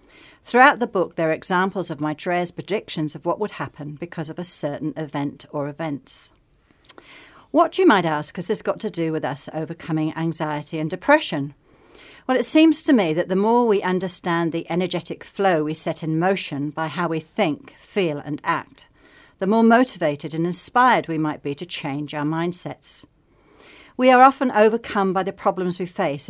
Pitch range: 155-195 Hz